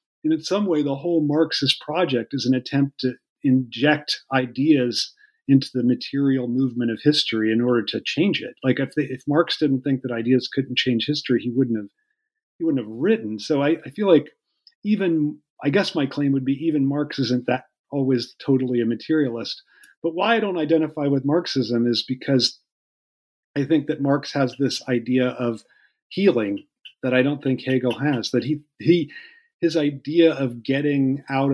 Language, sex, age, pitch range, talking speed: English, male, 40-59, 120-150 Hz, 185 wpm